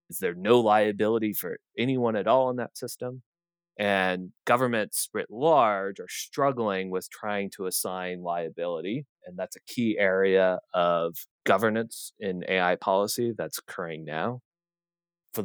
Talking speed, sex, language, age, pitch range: 140 wpm, male, English, 30-49, 90-120 Hz